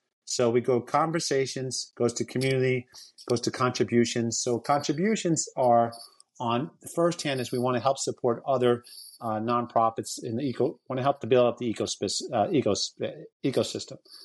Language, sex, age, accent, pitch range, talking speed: English, male, 30-49, American, 120-145 Hz, 165 wpm